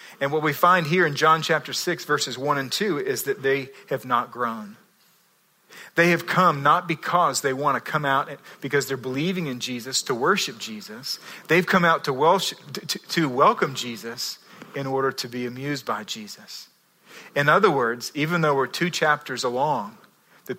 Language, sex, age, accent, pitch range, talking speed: English, male, 40-59, American, 130-175 Hz, 180 wpm